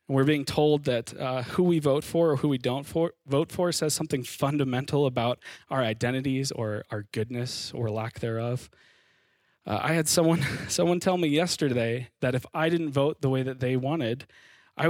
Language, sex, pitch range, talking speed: English, male, 120-150 Hz, 195 wpm